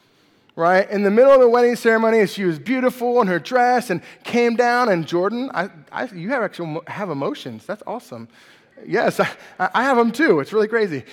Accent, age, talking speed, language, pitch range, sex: American, 20-39, 200 wpm, English, 155-215 Hz, male